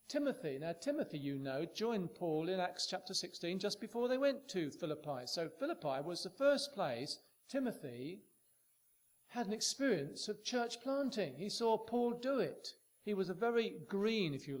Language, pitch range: English, 155-200 Hz